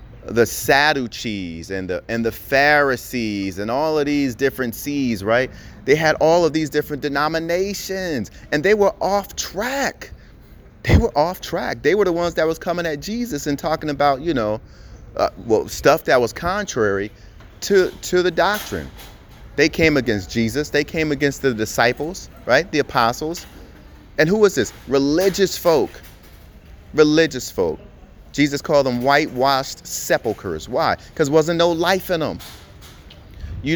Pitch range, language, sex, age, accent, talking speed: 115-170 Hz, English, male, 30-49, American, 155 wpm